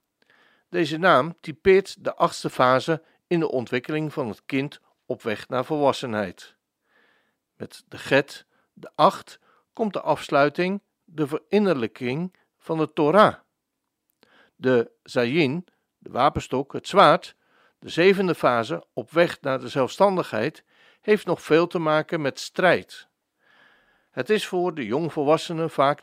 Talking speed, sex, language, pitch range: 130 wpm, male, Dutch, 130-175 Hz